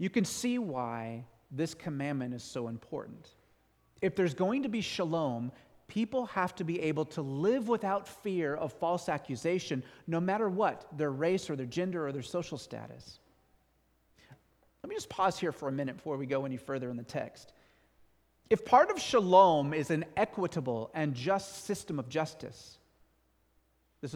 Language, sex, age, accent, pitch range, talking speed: English, male, 40-59, American, 110-180 Hz, 170 wpm